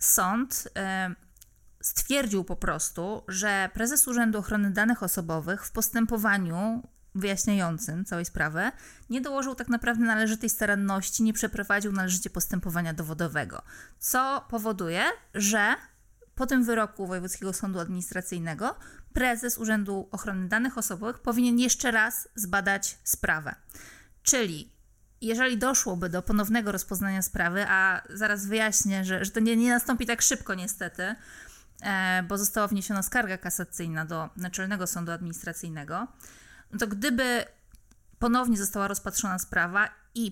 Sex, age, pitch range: female, 20-39, 185-230 Hz